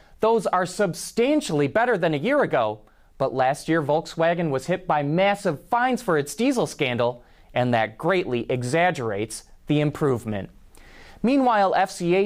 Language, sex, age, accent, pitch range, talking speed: English, male, 30-49, American, 140-210 Hz, 140 wpm